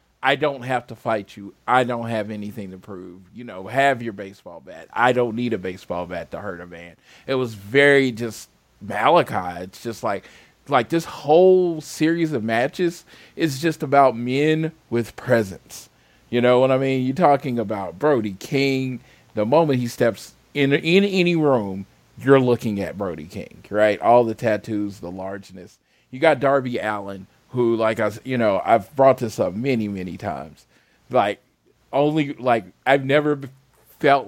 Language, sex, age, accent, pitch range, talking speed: English, male, 40-59, American, 110-135 Hz, 170 wpm